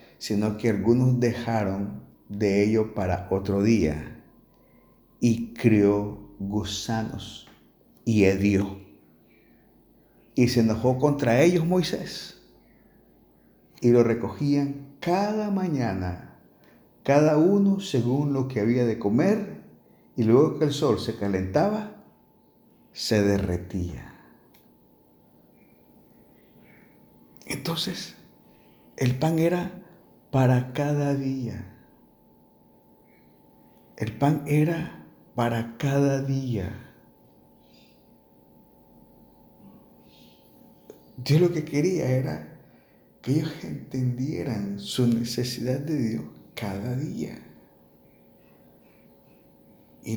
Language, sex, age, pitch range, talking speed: Spanish, male, 50-69, 100-145 Hz, 85 wpm